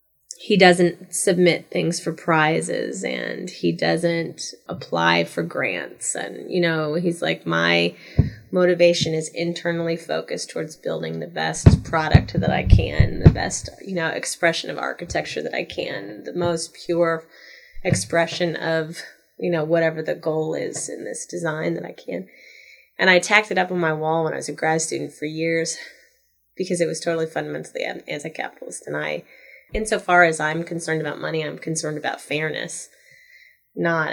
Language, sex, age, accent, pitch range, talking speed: English, female, 20-39, American, 160-185 Hz, 160 wpm